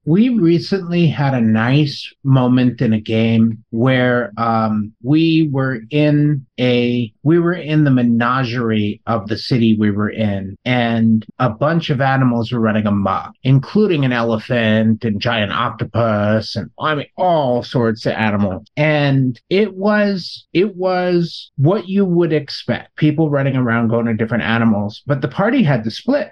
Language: English